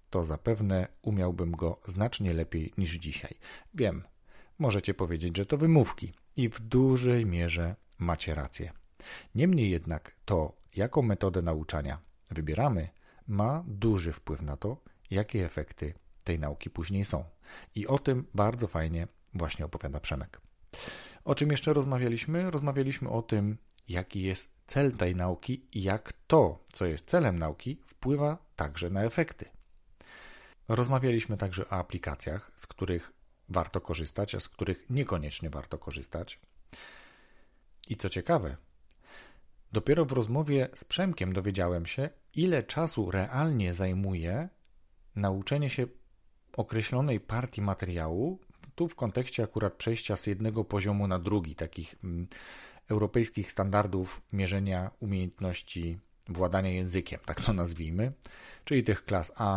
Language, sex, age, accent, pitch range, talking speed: Polish, male, 40-59, native, 85-115 Hz, 125 wpm